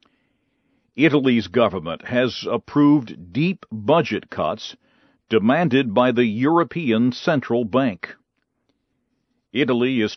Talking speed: 90 wpm